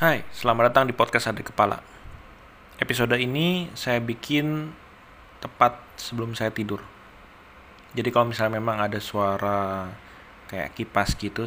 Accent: native